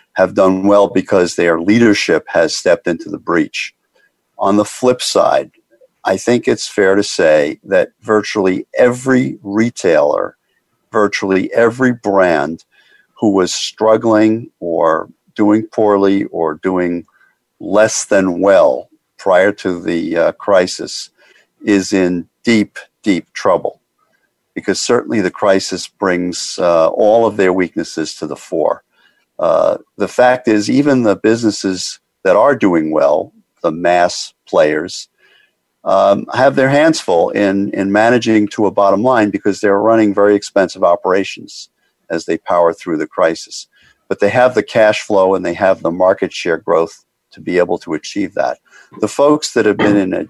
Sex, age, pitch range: male, 50-69, 95-115 Hz